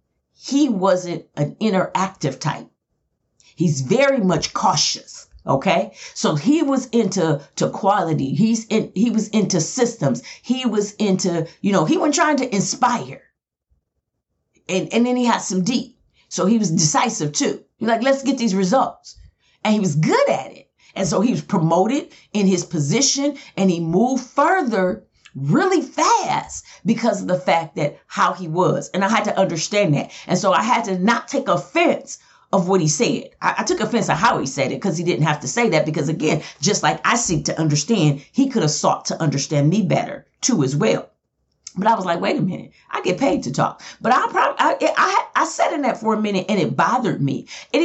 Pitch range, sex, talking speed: 170-240 Hz, female, 200 wpm